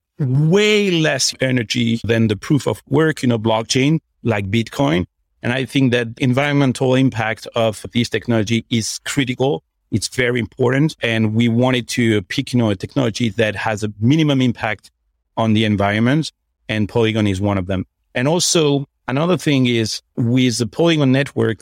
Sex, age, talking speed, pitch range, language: male, 40-59, 170 wpm, 110-140 Hz, English